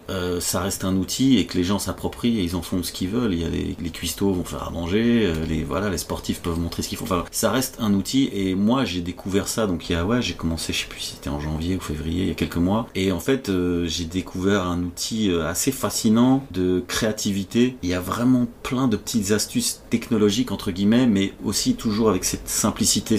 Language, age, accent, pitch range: French, 30-49, French, 90-110 Hz